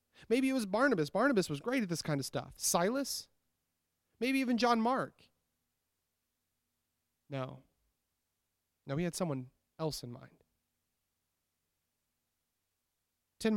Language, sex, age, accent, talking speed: English, male, 30-49, American, 115 wpm